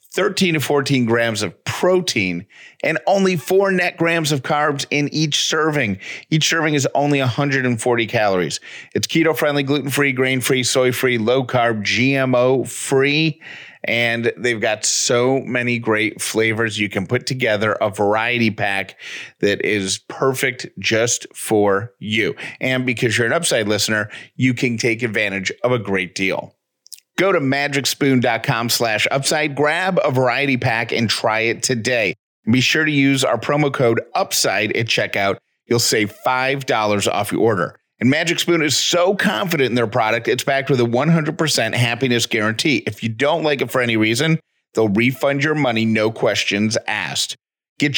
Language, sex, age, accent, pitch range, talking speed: English, male, 40-59, American, 115-145 Hz, 155 wpm